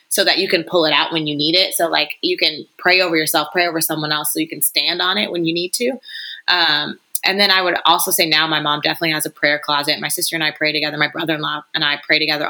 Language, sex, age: English, female, 20-39